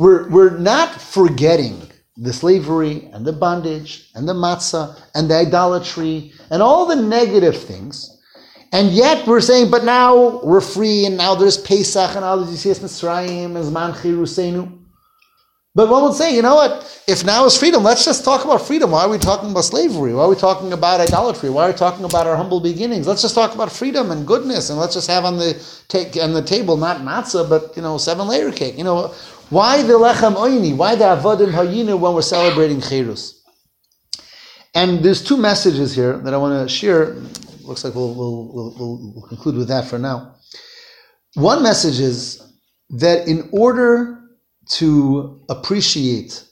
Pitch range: 155-225 Hz